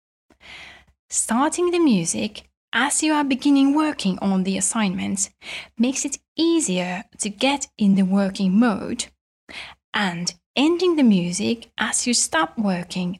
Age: 20-39